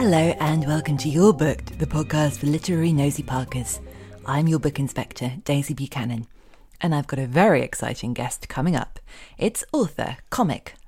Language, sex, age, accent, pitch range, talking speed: English, female, 20-39, British, 135-175 Hz, 165 wpm